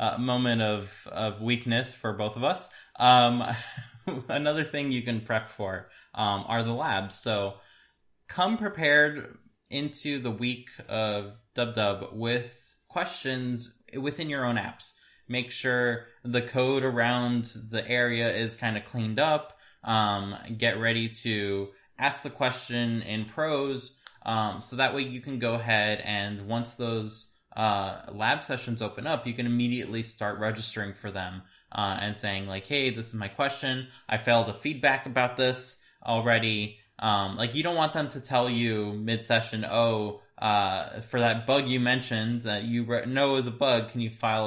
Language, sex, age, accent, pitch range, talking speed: English, male, 20-39, American, 110-130 Hz, 165 wpm